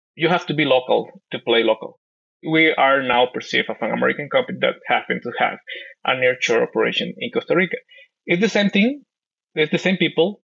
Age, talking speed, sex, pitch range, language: 20-39, 195 wpm, male, 125-175 Hz, English